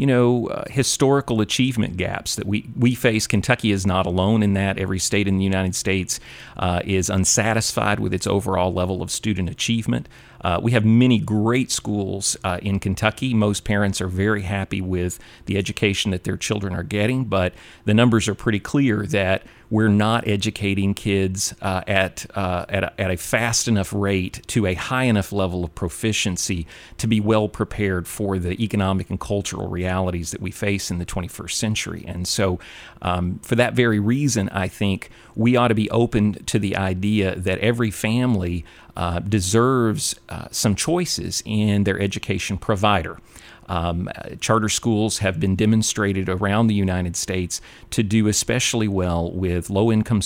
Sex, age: male, 40-59